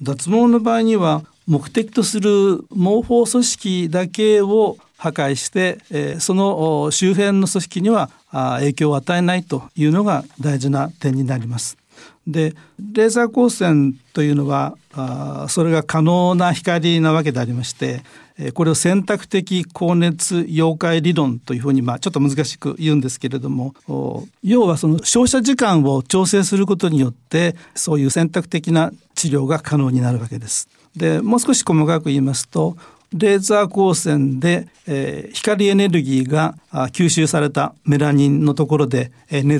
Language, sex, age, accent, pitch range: Japanese, male, 60-79, native, 140-190 Hz